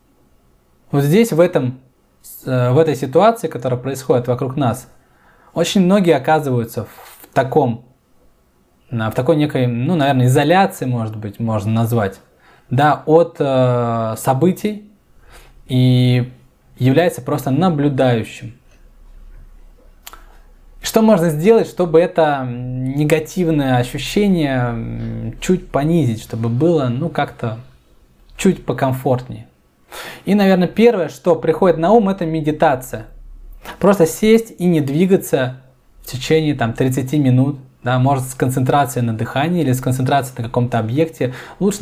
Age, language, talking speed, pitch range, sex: 20-39, Russian, 115 wpm, 115-165 Hz, male